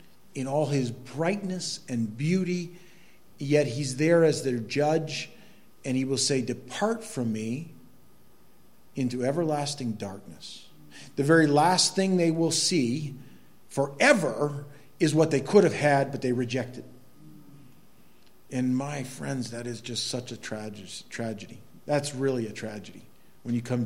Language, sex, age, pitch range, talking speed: English, male, 50-69, 120-155 Hz, 140 wpm